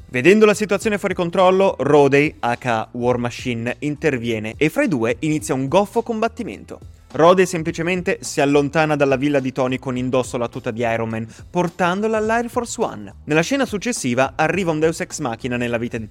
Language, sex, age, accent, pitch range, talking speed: Italian, male, 20-39, native, 125-195 Hz, 180 wpm